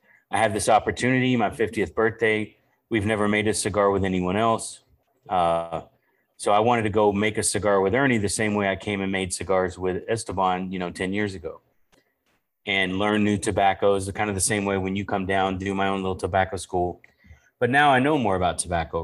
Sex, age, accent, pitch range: male, 30-49, American, 95-105 Hz